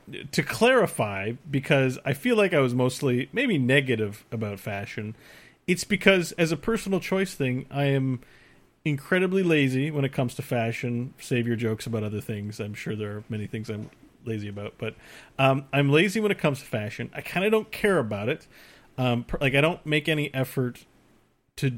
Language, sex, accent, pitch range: English, male, American, 115-150 Hz